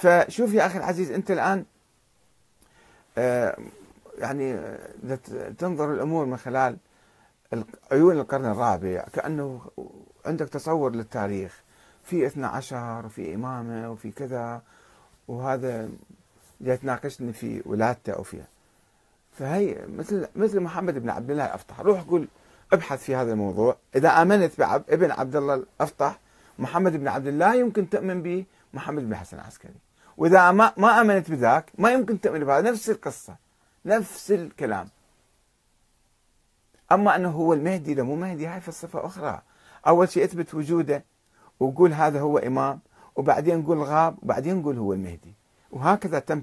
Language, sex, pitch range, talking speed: Arabic, male, 125-185 Hz, 130 wpm